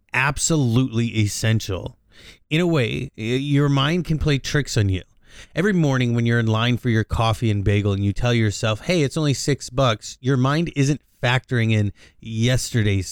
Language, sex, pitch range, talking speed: English, male, 105-135 Hz, 175 wpm